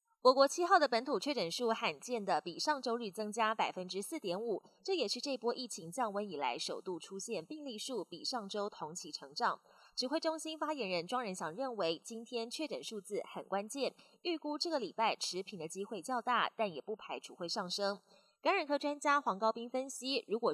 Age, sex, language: 20-39, female, Chinese